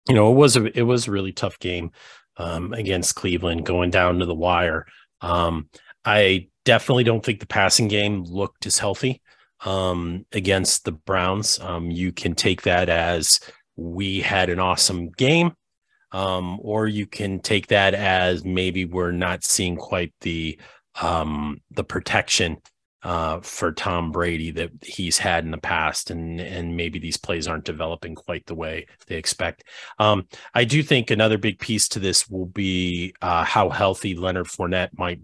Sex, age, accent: male, 30-49, American